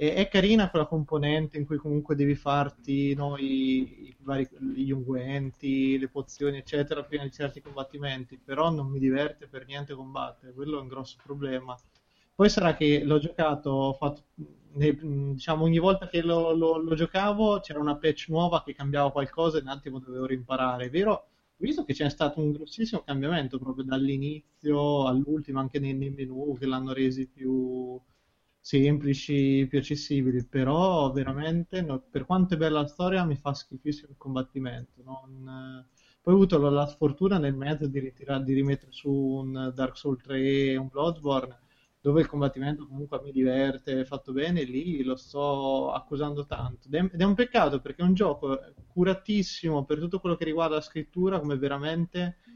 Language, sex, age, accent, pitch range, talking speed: Italian, male, 20-39, native, 135-160 Hz, 175 wpm